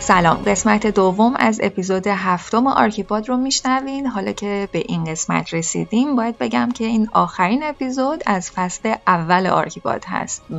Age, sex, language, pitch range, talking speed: 10-29, female, Persian, 180-235 Hz, 145 wpm